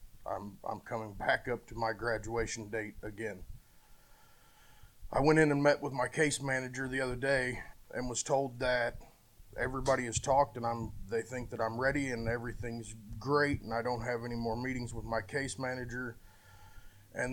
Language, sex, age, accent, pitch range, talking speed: English, male, 30-49, American, 115-135 Hz, 175 wpm